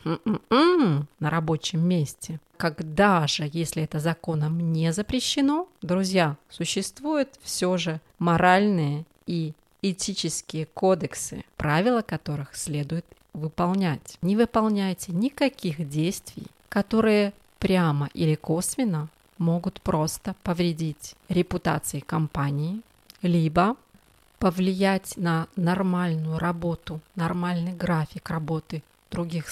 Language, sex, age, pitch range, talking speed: Russian, female, 30-49, 160-215 Hz, 90 wpm